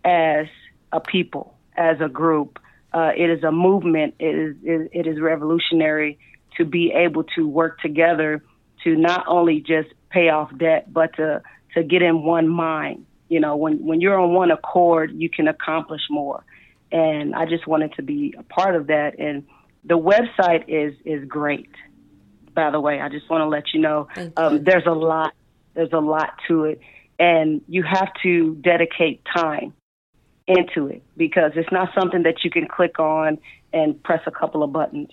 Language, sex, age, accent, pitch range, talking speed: English, female, 40-59, American, 155-175 Hz, 180 wpm